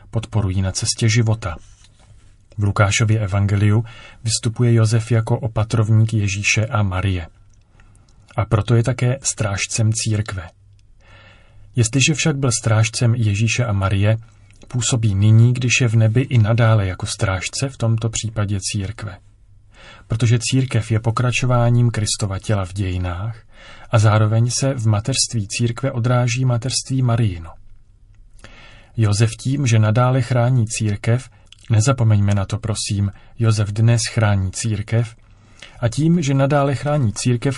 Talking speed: 125 wpm